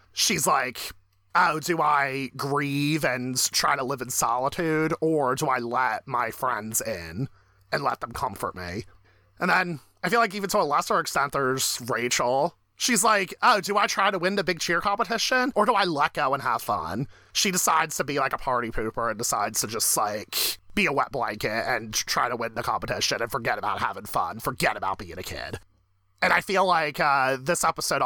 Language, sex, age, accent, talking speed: English, male, 30-49, American, 205 wpm